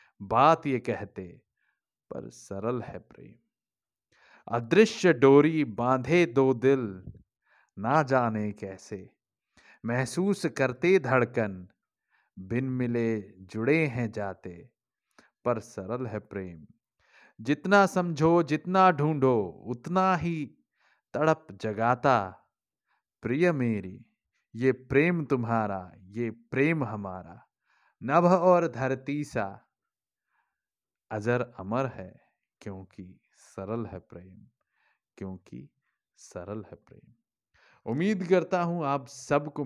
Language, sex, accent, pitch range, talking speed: Hindi, male, native, 100-145 Hz, 95 wpm